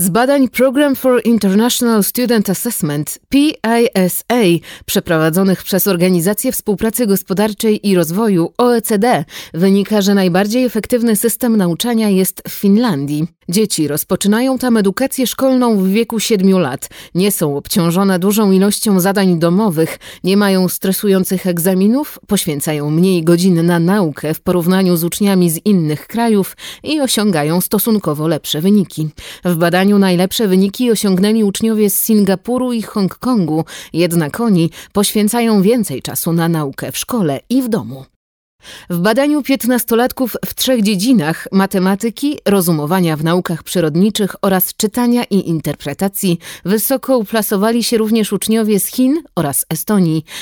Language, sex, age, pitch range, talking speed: Polish, female, 30-49, 175-225 Hz, 130 wpm